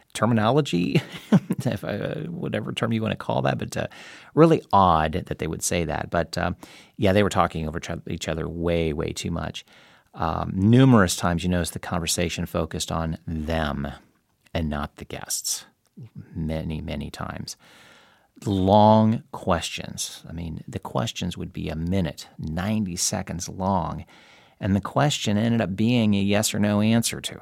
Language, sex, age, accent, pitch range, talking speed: English, male, 40-59, American, 80-105 Hz, 160 wpm